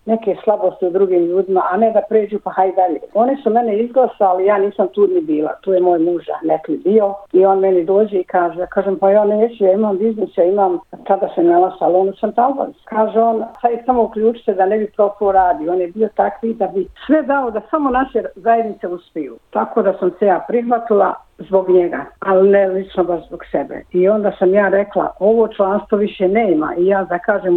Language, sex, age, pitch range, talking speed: Croatian, female, 50-69, 185-225 Hz, 215 wpm